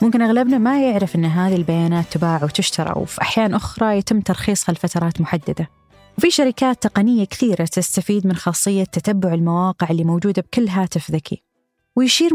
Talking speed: 150 wpm